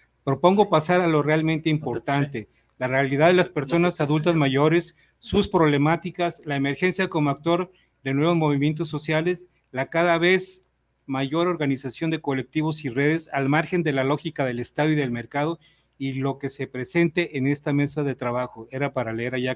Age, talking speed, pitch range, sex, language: 40-59, 170 wpm, 130-160 Hz, male, Spanish